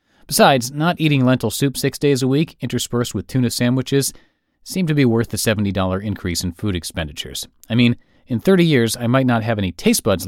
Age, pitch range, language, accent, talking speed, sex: 30-49, 95-135 Hz, English, American, 205 wpm, male